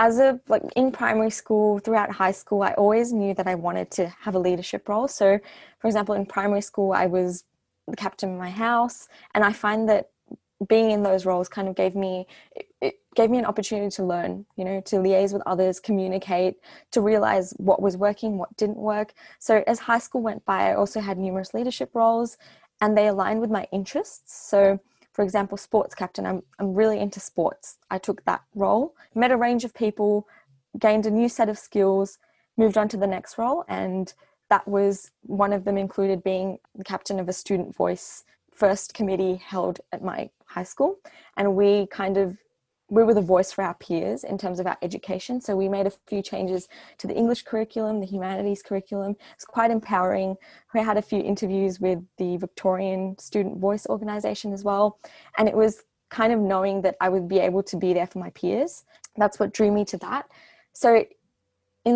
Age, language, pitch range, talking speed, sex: 20-39, English, 190-220 Hz, 200 wpm, female